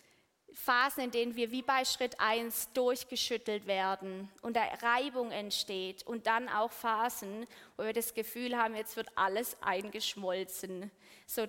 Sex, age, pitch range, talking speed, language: female, 20-39, 220-250 Hz, 145 wpm, German